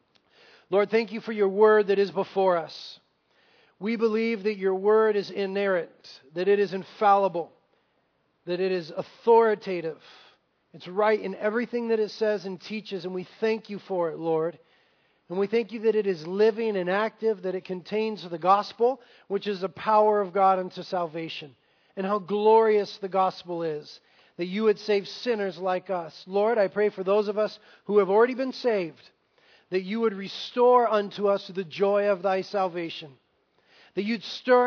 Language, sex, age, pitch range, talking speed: English, male, 40-59, 190-220 Hz, 180 wpm